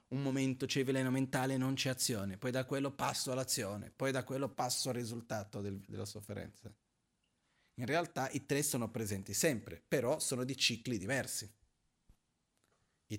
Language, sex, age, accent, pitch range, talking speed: Italian, male, 40-59, native, 105-130 Hz, 170 wpm